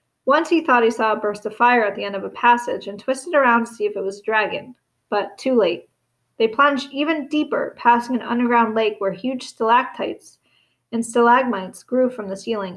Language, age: English, 30-49